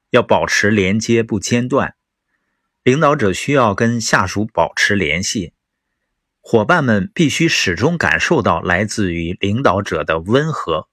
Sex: male